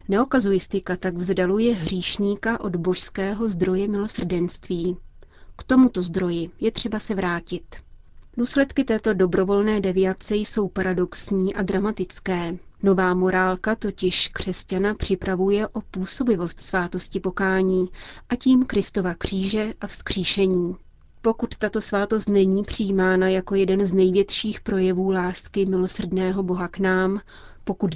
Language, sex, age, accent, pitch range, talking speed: Czech, female, 30-49, native, 185-210 Hz, 115 wpm